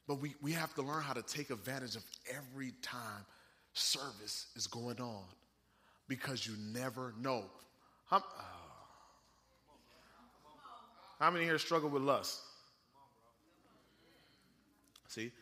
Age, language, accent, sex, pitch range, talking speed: 30-49, English, American, male, 125-165 Hz, 115 wpm